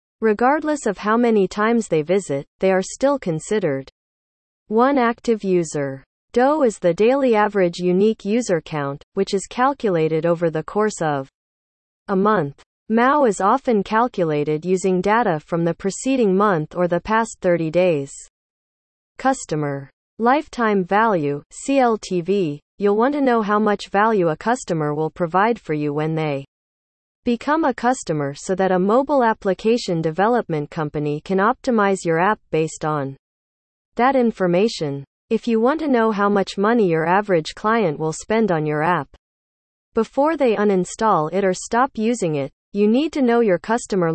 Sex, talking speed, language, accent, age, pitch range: female, 155 wpm, English, American, 40-59, 160-230 Hz